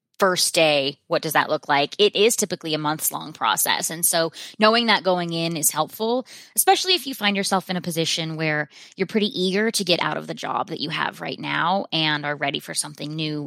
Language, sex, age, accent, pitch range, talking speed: English, female, 20-39, American, 160-210 Hz, 225 wpm